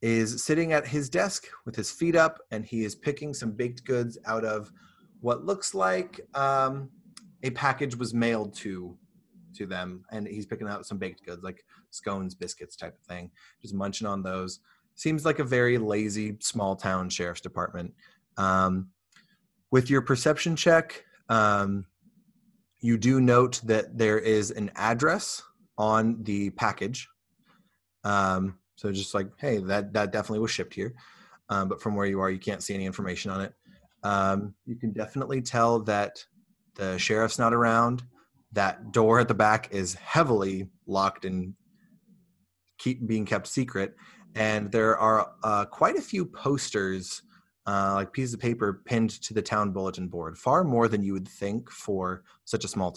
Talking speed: 170 wpm